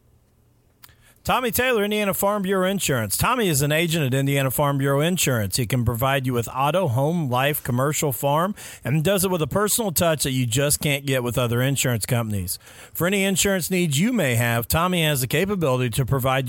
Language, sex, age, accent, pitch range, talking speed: English, male, 40-59, American, 120-160 Hz, 195 wpm